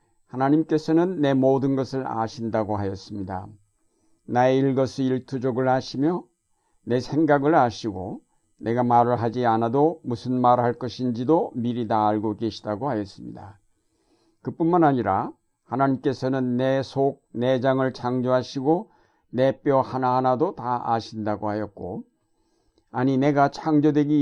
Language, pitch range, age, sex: Korean, 115-140 Hz, 60-79, male